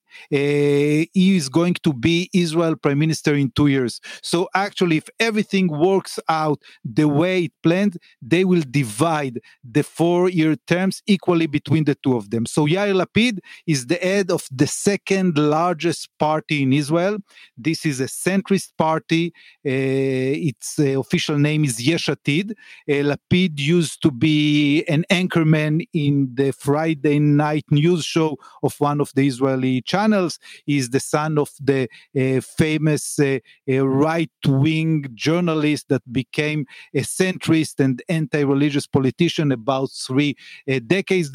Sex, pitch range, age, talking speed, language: male, 140-170 Hz, 40-59, 145 wpm, English